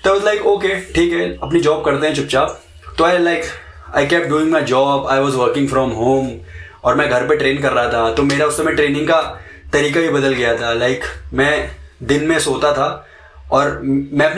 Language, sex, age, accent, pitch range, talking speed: English, male, 20-39, Indian, 135-175 Hz, 160 wpm